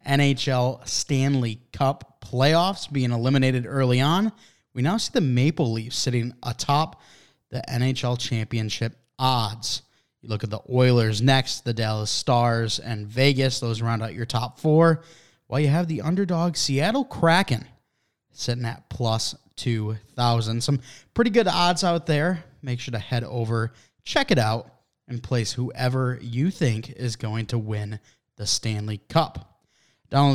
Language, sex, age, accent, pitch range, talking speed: English, male, 20-39, American, 120-145 Hz, 150 wpm